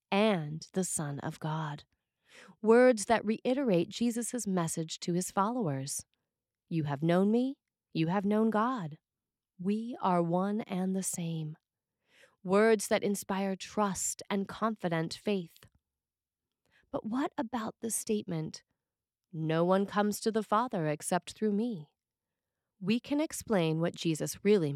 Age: 30-49